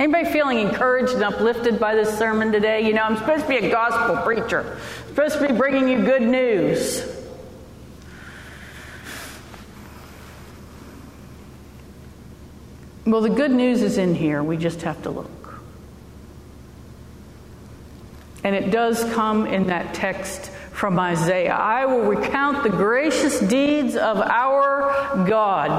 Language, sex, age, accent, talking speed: English, female, 50-69, American, 130 wpm